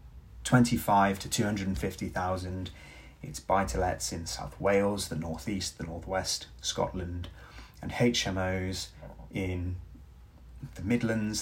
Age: 30-49